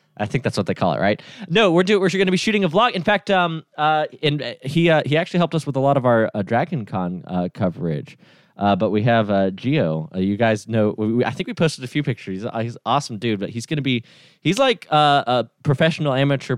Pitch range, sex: 115-175 Hz, male